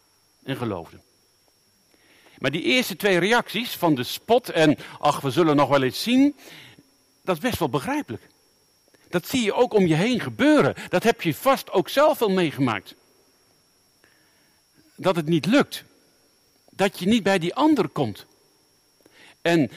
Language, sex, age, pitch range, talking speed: Dutch, male, 50-69, 130-195 Hz, 155 wpm